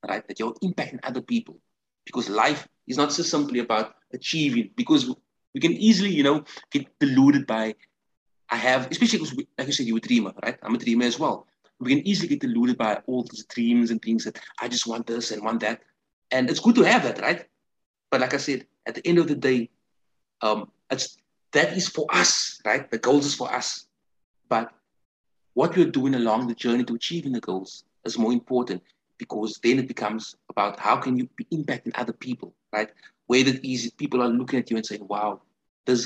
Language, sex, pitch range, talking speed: English, male, 115-155 Hz, 215 wpm